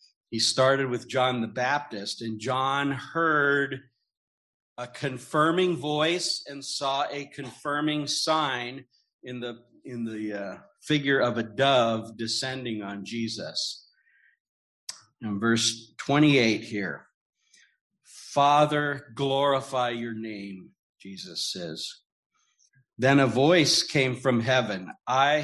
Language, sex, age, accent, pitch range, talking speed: English, male, 50-69, American, 115-135 Hz, 110 wpm